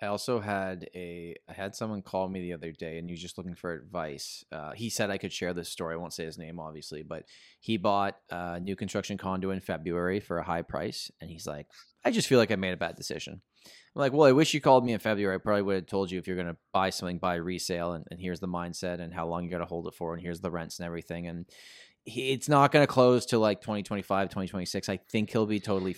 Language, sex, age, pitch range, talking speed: English, male, 20-39, 85-105 Hz, 270 wpm